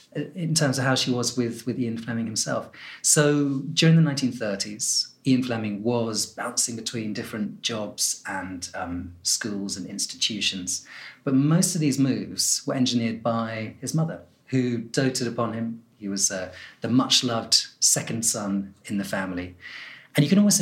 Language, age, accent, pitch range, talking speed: English, 30-49, British, 95-130 Hz, 160 wpm